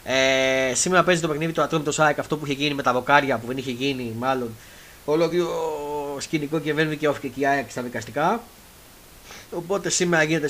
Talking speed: 190 wpm